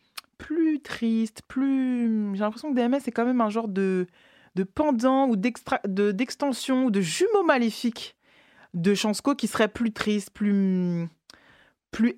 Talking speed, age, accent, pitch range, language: 155 wpm, 20-39, French, 160-220 Hz, French